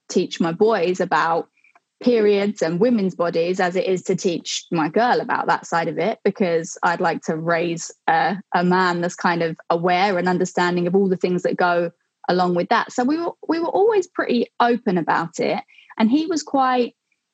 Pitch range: 180-235 Hz